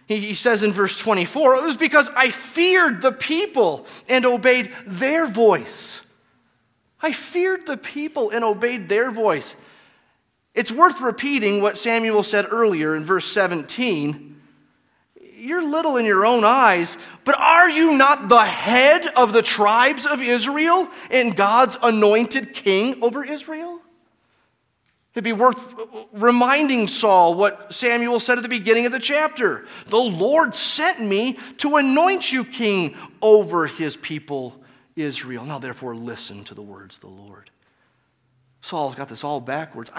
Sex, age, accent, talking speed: male, 30-49, American, 145 wpm